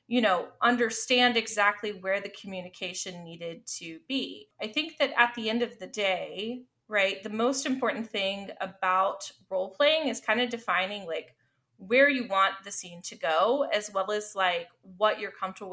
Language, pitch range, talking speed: English, 190-235 Hz, 170 wpm